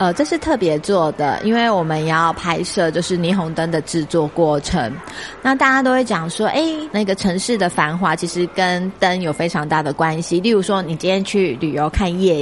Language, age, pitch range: Chinese, 20-39, 170-240 Hz